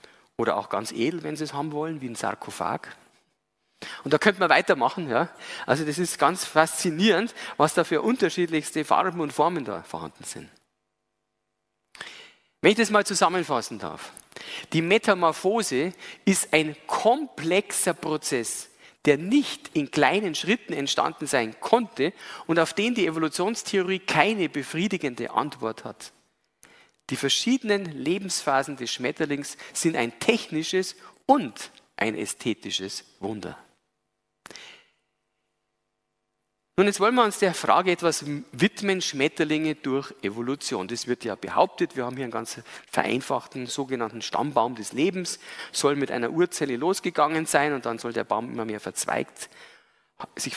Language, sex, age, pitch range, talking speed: German, male, 40-59, 135-190 Hz, 135 wpm